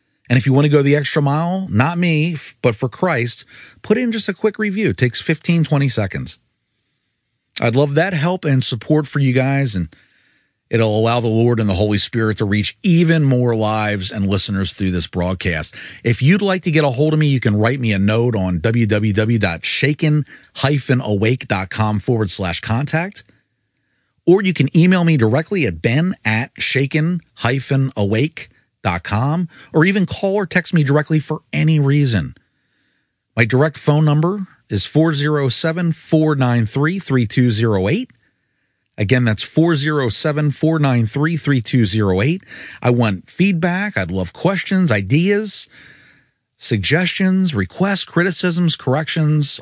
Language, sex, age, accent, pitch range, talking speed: English, male, 40-59, American, 110-160 Hz, 140 wpm